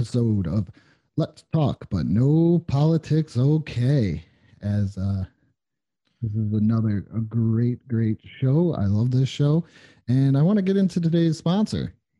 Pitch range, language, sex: 115-160 Hz, English, male